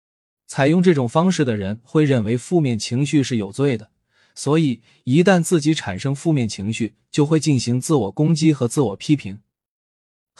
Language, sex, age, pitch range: Chinese, male, 20-39, 110-155 Hz